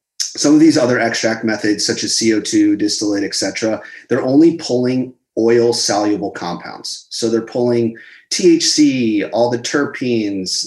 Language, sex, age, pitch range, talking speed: English, male, 30-49, 110-120 Hz, 135 wpm